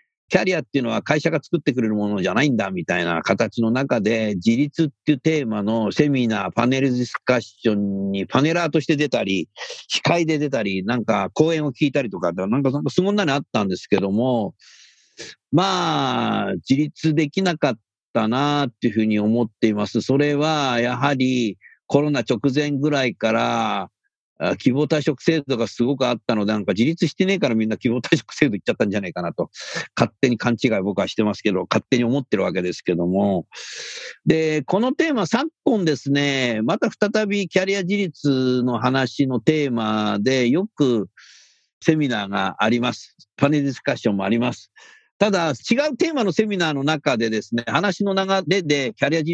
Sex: male